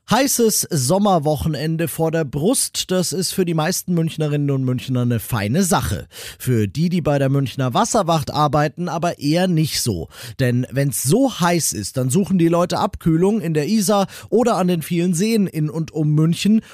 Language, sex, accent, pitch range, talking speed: German, male, German, 130-175 Hz, 185 wpm